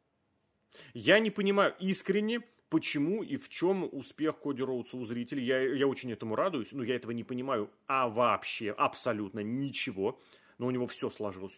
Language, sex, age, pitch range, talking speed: Russian, male, 30-49, 120-165 Hz, 165 wpm